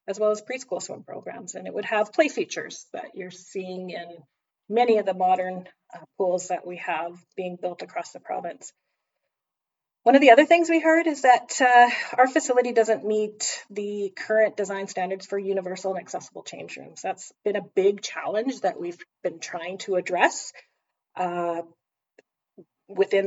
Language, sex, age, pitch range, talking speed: English, female, 30-49, 185-230 Hz, 170 wpm